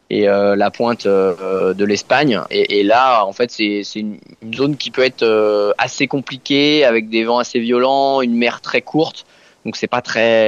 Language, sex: French, male